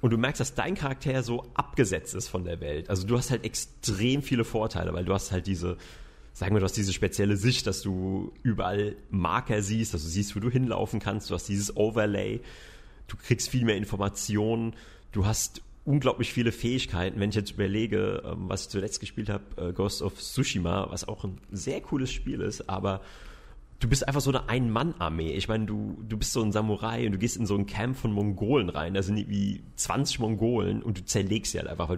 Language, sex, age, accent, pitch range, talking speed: German, male, 30-49, German, 100-120 Hz, 210 wpm